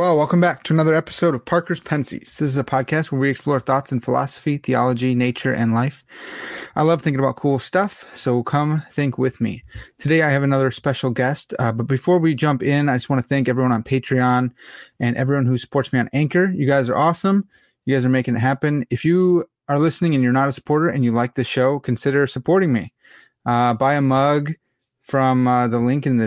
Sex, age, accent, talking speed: male, 30-49, American, 225 wpm